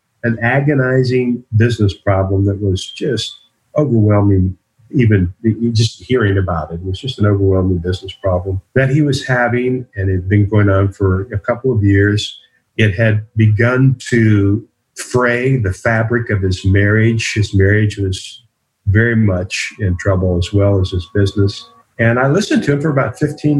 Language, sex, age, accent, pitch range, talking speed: English, male, 50-69, American, 95-120 Hz, 165 wpm